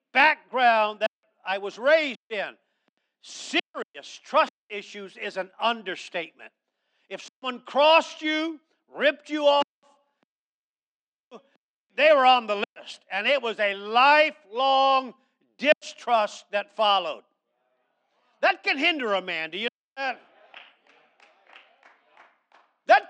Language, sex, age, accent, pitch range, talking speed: English, male, 50-69, American, 220-305 Hz, 110 wpm